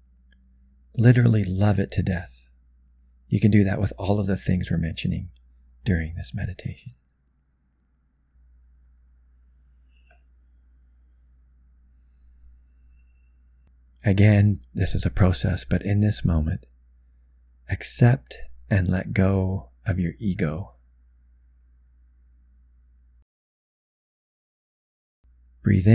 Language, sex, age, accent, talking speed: English, male, 40-59, American, 85 wpm